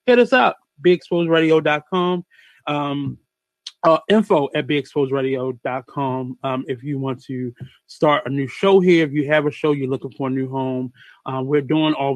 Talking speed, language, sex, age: 160 wpm, English, male, 20-39